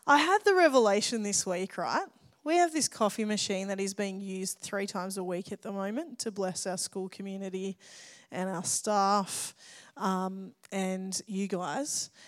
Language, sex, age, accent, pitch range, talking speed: English, female, 20-39, Australian, 195-235 Hz, 170 wpm